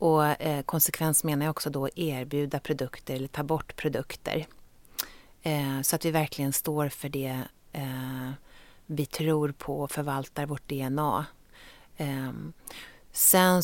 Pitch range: 135-155 Hz